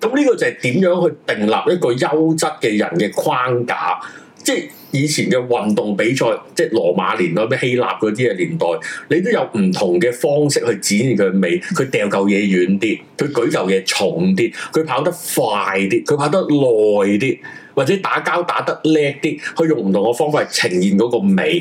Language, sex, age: Chinese, male, 30-49